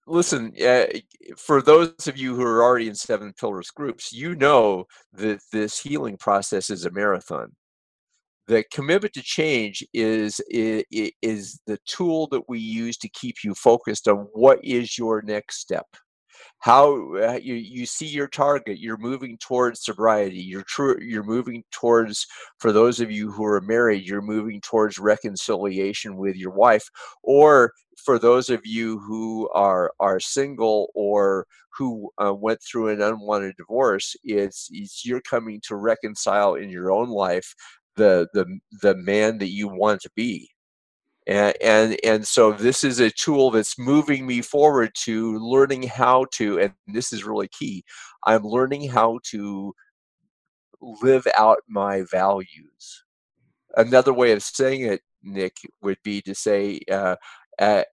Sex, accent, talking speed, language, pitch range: male, American, 155 wpm, English, 105-130 Hz